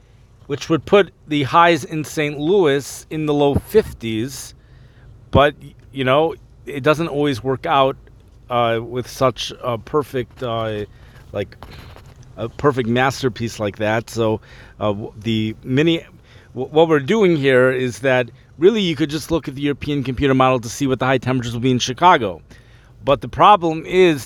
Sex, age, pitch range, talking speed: male, 40-59, 120-150 Hz, 165 wpm